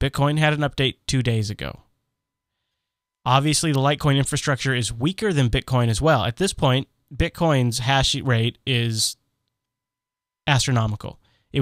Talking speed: 135 wpm